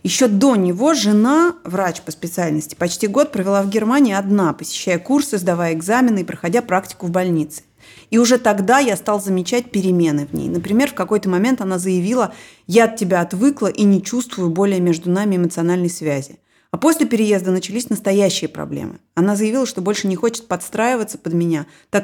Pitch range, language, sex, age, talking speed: 175-220 Hz, Russian, female, 30-49, 175 wpm